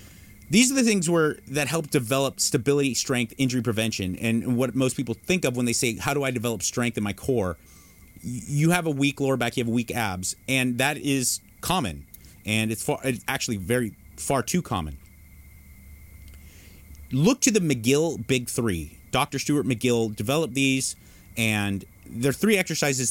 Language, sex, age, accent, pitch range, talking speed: English, male, 30-49, American, 95-135 Hz, 175 wpm